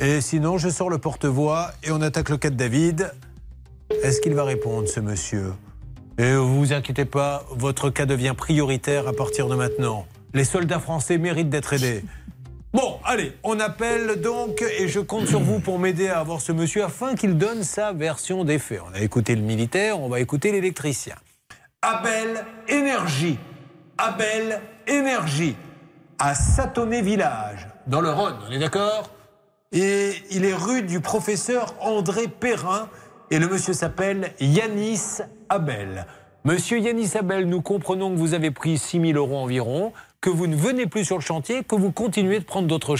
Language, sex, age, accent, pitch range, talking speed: French, male, 40-59, French, 140-200 Hz, 175 wpm